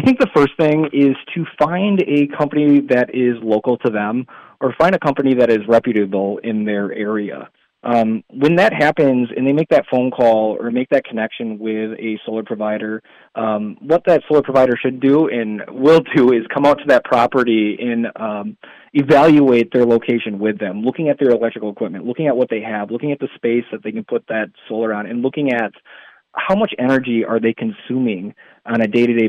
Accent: American